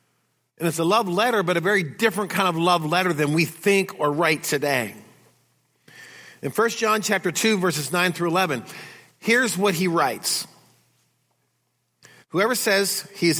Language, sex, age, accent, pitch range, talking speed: English, male, 50-69, American, 160-210 Hz, 160 wpm